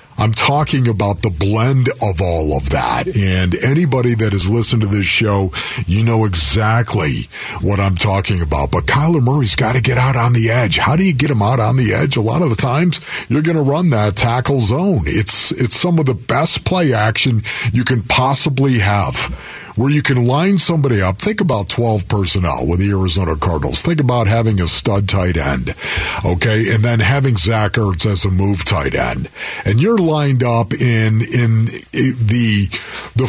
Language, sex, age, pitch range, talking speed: English, male, 50-69, 100-135 Hz, 195 wpm